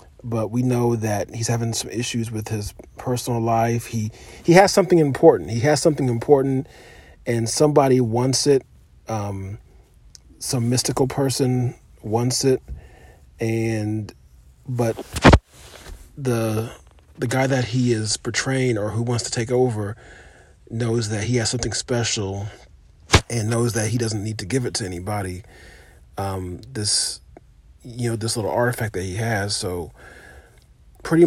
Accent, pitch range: American, 105-125 Hz